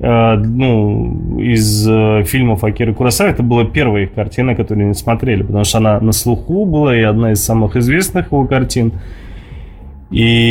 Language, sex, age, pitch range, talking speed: Russian, male, 20-39, 105-125 Hz, 165 wpm